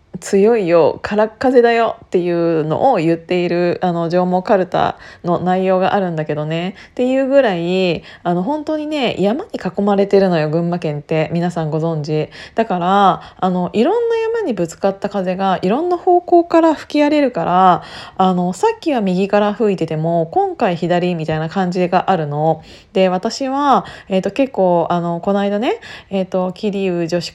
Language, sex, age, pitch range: Japanese, female, 20-39, 175-230 Hz